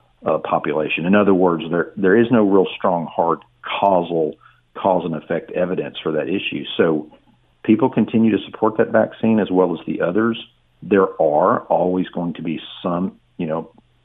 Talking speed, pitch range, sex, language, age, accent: 175 wpm, 80-95 Hz, male, English, 50-69, American